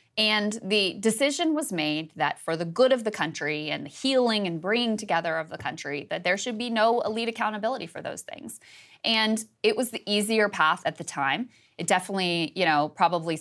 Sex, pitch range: female, 165-205 Hz